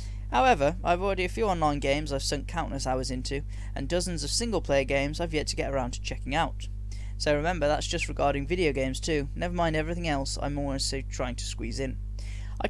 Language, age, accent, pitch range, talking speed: English, 10-29, British, 100-160 Hz, 210 wpm